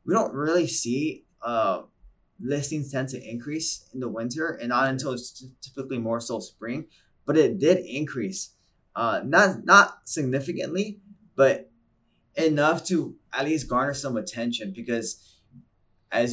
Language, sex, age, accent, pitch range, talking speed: English, male, 20-39, American, 120-170 Hz, 140 wpm